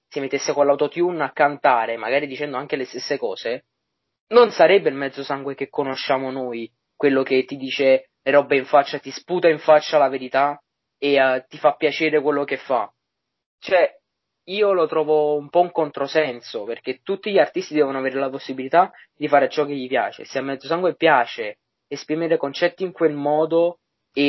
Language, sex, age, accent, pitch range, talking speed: Italian, male, 20-39, native, 140-170 Hz, 185 wpm